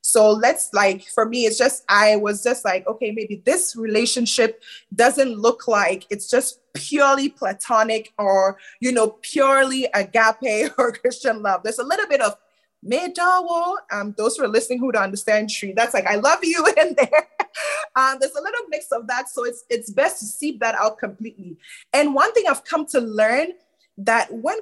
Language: English